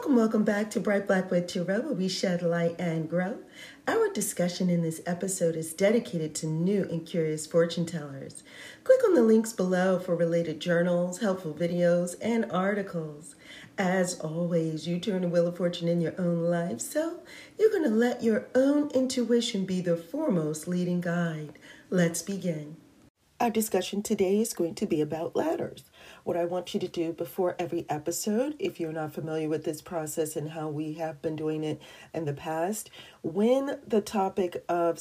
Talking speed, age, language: 180 wpm, 40-59, English